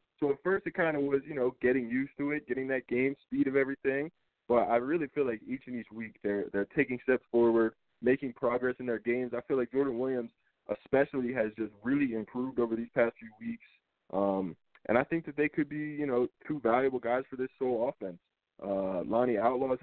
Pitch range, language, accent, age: 115-135 Hz, English, American, 20-39